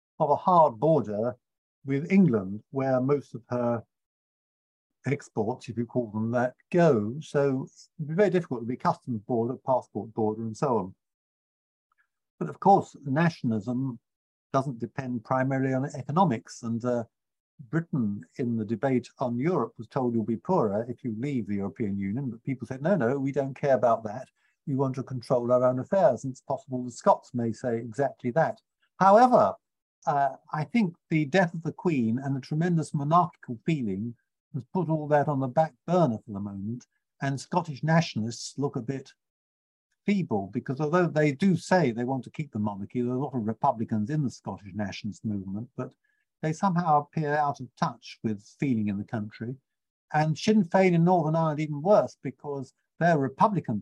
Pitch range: 115-155 Hz